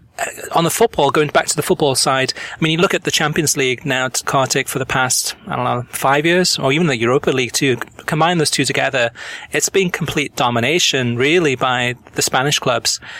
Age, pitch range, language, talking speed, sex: 30-49, 130-145 Hz, English, 210 wpm, male